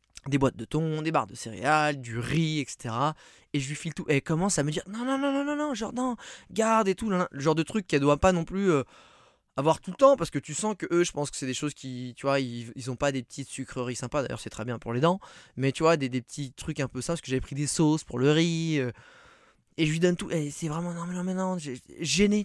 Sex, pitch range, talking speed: male, 125-160 Hz, 305 wpm